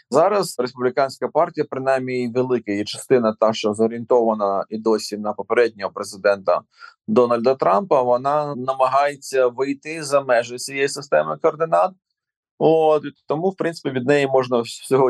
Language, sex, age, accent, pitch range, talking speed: Ukrainian, male, 20-39, native, 115-140 Hz, 130 wpm